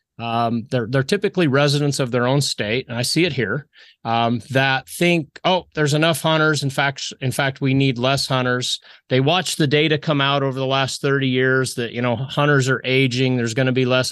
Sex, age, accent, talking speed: male, 30-49, American, 220 wpm